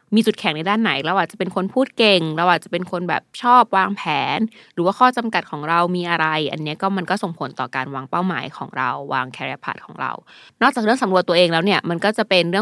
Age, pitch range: 20-39, 160-200 Hz